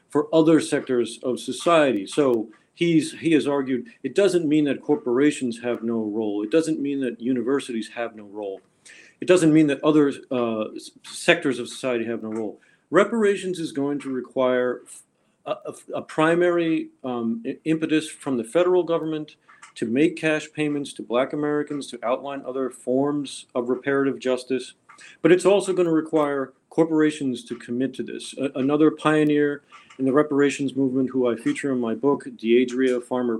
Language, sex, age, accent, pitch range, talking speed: English, male, 50-69, American, 125-155 Hz, 165 wpm